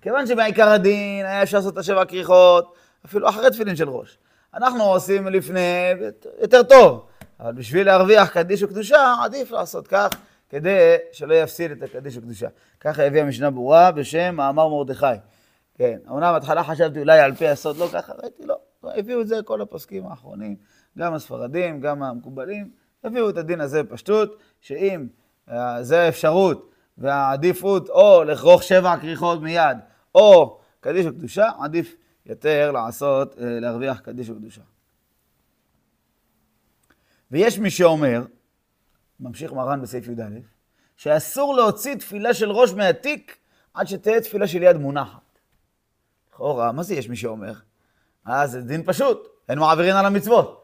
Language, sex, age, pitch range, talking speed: Hebrew, male, 30-49, 140-205 Hz, 145 wpm